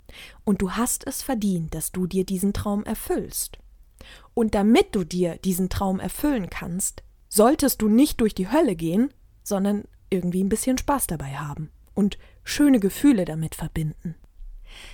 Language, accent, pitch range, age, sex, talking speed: German, German, 170-215 Hz, 20-39, female, 155 wpm